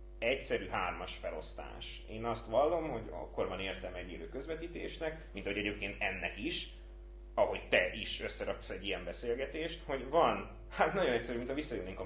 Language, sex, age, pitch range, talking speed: Hungarian, male, 30-49, 95-130 Hz, 165 wpm